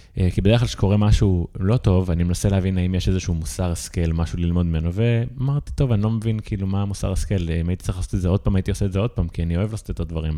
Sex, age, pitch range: male, 20-39, 85-100 Hz